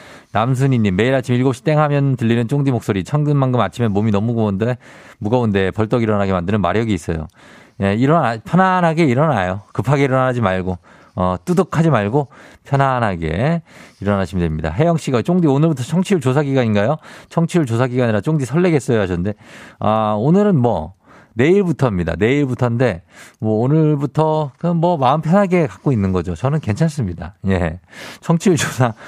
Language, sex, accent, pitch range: Korean, male, native, 105-155 Hz